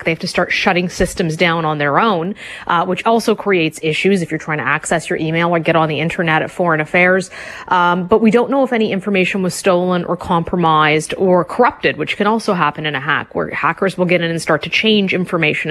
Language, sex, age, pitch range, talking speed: English, female, 30-49, 165-195 Hz, 235 wpm